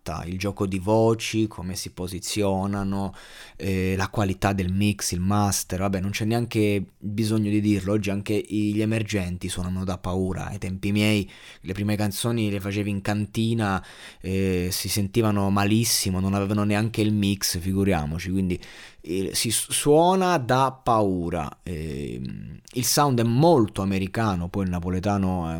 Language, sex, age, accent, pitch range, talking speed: Italian, male, 20-39, native, 95-110 Hz, 150 wpm